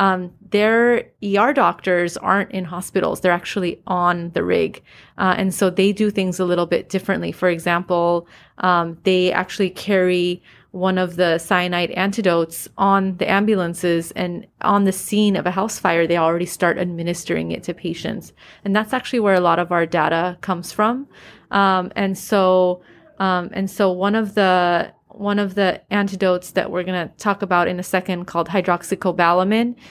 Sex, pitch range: female, 175-200 Hz